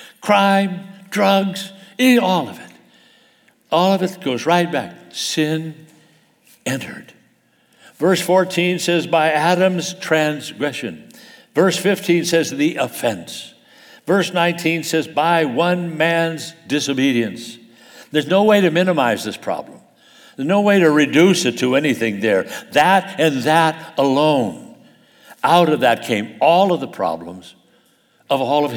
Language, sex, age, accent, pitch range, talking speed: English, male, 60-79, American, 145-195 Hz, 130 wpm